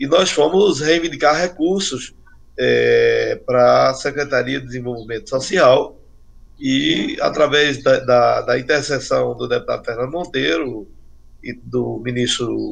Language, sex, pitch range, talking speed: Portuguese, male, 125-195 Hz, 110 wpm